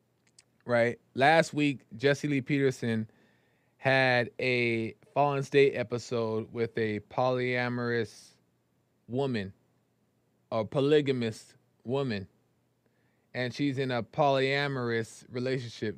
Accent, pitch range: American, 115-150 Hz